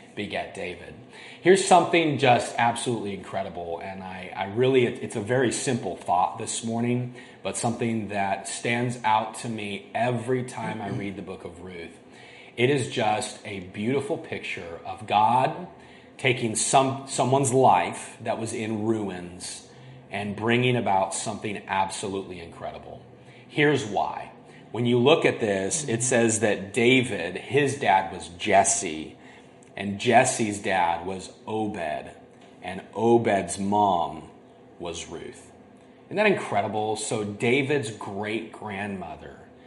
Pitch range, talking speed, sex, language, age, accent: 100-125 Hz, 130 wpm, male, English, 30-49, American